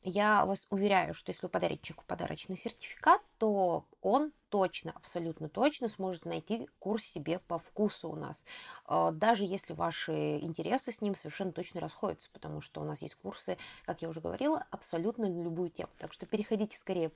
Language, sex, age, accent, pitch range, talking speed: Russian, female, 20-39, native, 195-260 Hz, 175 wpm